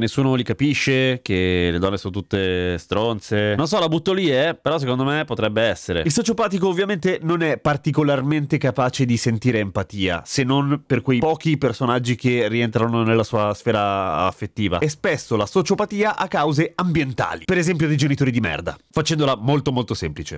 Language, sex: Italian, male